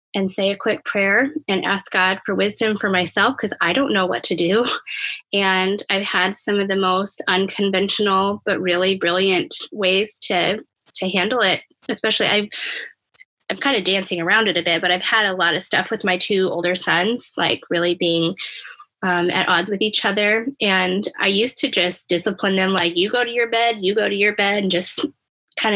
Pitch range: 190-225 Hz